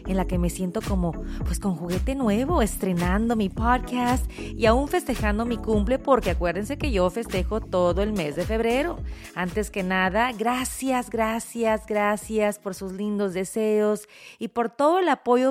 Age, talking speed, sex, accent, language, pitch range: 30-49, 165 wpm, female, Mexican, Spanish, 195-255 Hz